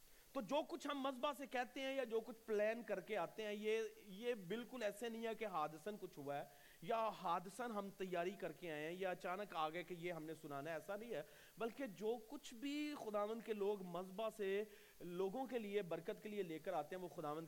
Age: 40-59